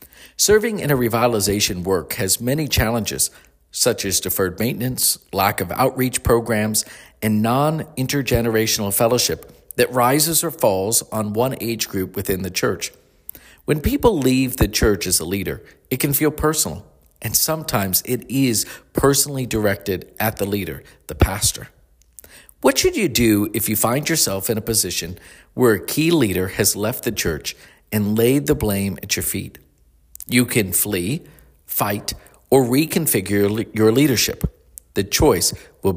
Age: 50-69